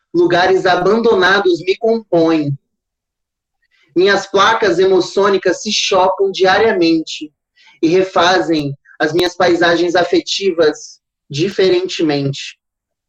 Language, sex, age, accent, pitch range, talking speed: Portuguese, male, 20-39, Brazilian, 160-270 Hz, 80 wpm